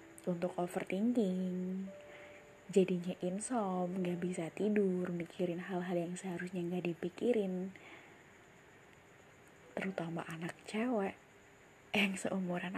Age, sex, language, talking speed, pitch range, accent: 20-39, female, Indonesian, 85 wpm, 180-210 Hz, native